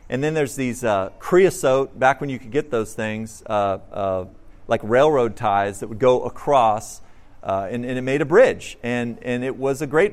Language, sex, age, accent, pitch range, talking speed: English, male, 40-59, American, 115-165 Hz, 205 wpm